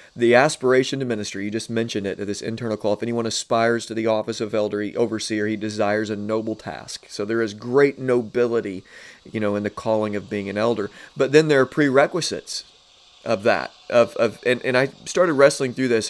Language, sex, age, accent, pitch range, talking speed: English, male, 30-49, American, 110-135 Hz, 210 wpm